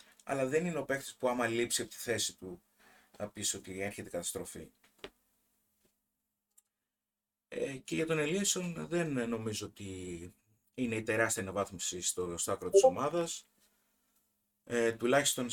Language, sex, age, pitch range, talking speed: Greek, male, 30-49, 95-120 Hz, 135 wpm